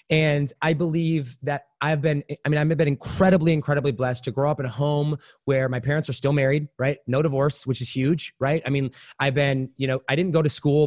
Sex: male